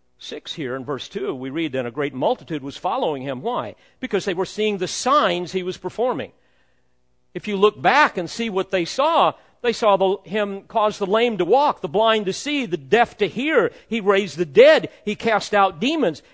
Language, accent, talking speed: English, American, 215 wpm